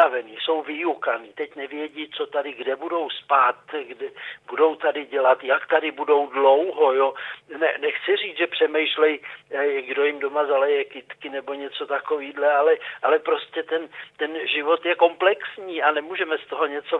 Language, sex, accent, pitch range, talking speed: Czech, male, native, 135-175 Hz, 155 wpm